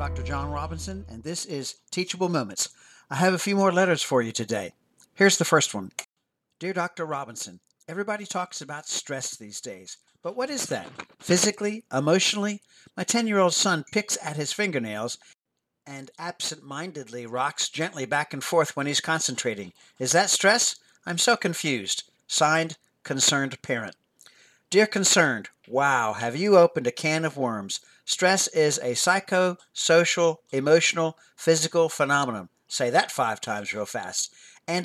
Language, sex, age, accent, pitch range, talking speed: English, male, 50-69, American, 135-190 Hz, 150 wpm